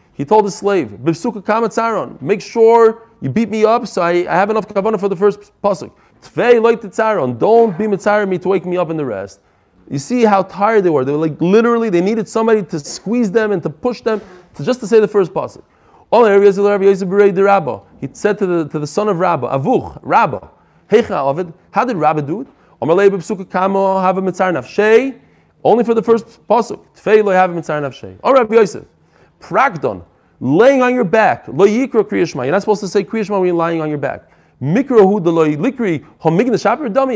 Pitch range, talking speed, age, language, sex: 175-225 Hz, 155 wpm, 30-49, English, male